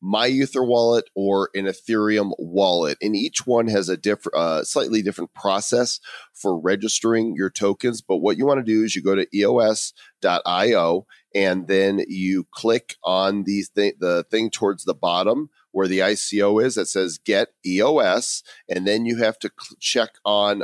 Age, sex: 40-59, male